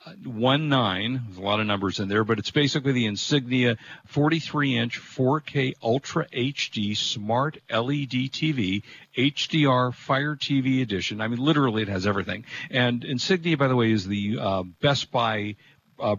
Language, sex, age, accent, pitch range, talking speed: English, male, 50-69, American, 110-140 Hz, 155 wpm